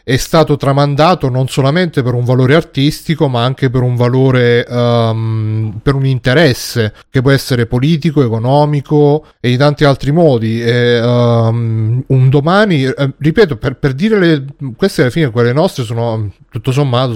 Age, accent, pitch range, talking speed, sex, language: 30-49, native, 120-150 Hz, 145 wpm, male, Italian